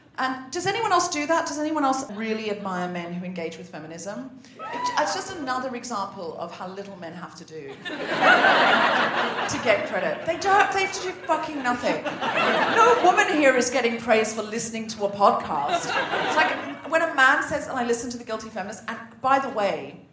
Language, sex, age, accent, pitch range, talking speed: English, female, 40-59, British, 215-295 Hz, 195 wpm